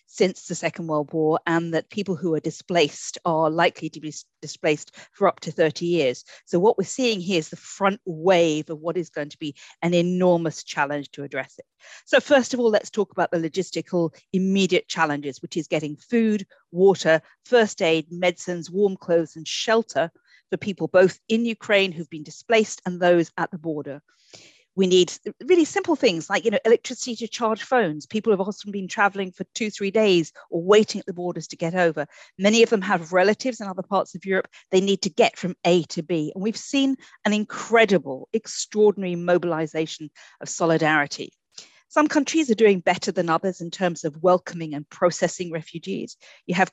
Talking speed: 195 wpm